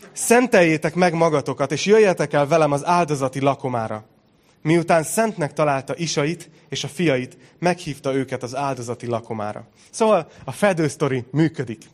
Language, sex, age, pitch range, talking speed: Hungarian, male, 30-49, 120-155 Hz, 130 wpm